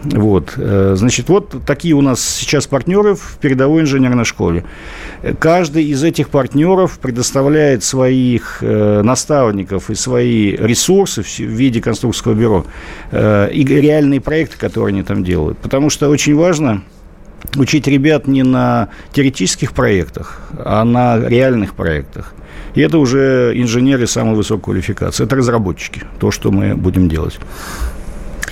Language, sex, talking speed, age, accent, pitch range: Russian, male, 125 wpm, 50-69, native, 105-140 Hz